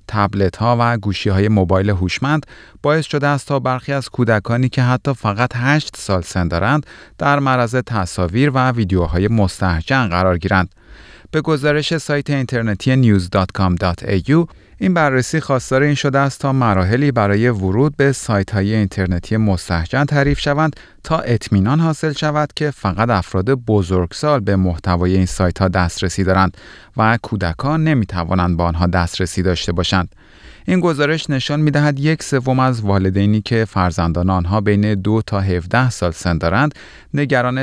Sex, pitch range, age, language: male, 95-135 Hz, 30-49, Persian